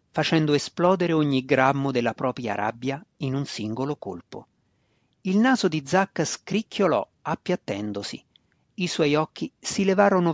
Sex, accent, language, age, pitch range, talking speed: male, native, Italian, 40-59, 125-165 Hz, 130 wpm